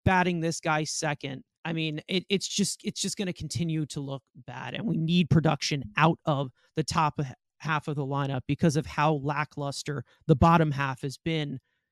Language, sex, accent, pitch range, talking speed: English, male, American, 150-200 Hz, 190 wpm